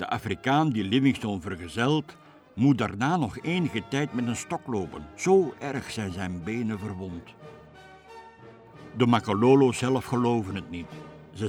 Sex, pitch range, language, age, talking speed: male, 105-145 Hz, Dutch, 60-79, 140 wpm